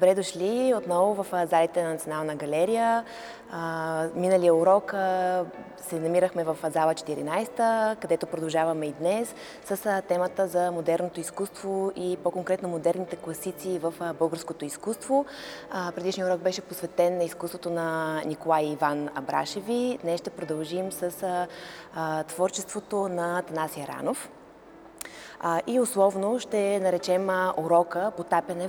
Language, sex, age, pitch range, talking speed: Bulgarian, female, 20-39, 165-190 Hz, 115 wpm